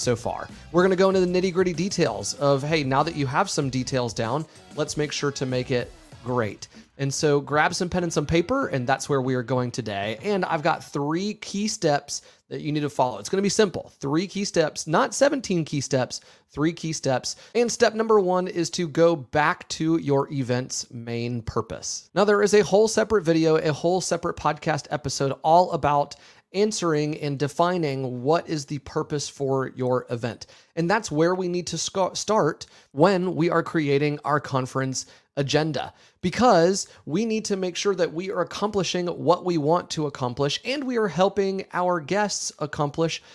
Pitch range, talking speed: 140-180 Hz, 195 wpm